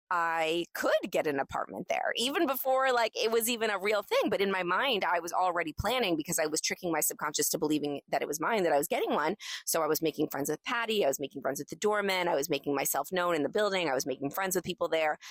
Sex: female